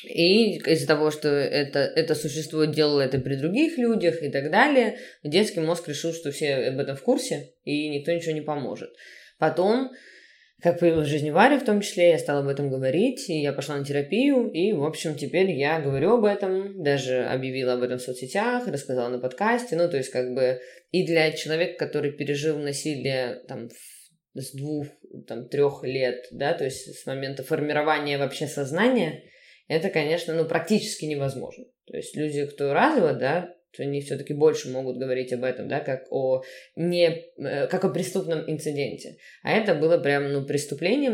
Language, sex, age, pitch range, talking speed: Russian, female, 20-39, 140-180 Hz, 180 wpm